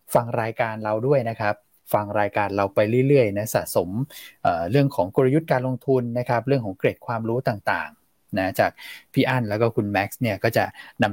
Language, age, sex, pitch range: Thai, 20-39, male, 105-125 Hz